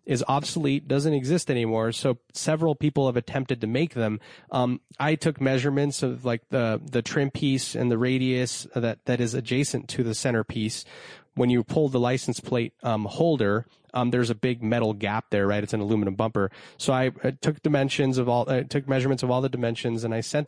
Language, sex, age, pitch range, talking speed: English, male, 30-49, 120-140 Hz, 210 wpm